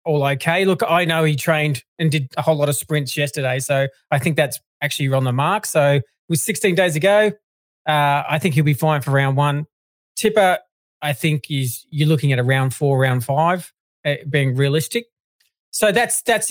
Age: 20-39